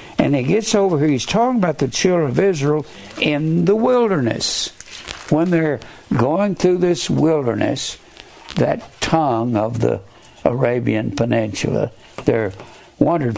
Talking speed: 130 wpm